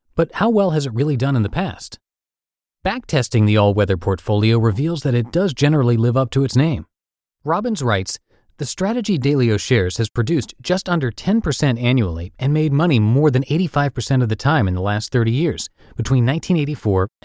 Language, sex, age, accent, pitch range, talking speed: English, male, 30-49, American, 110-150 Hz, 180 wpm